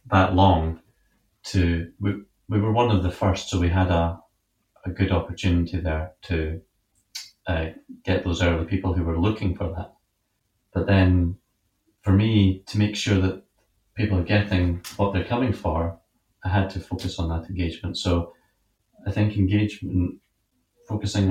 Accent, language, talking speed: British, English, 160 wpm